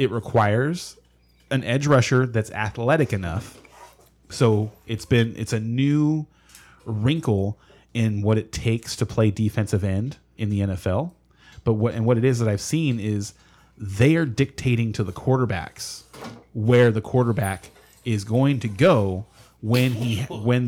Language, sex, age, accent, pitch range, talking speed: English, male, 30-49, American, 105-125 Hz, 150 wpm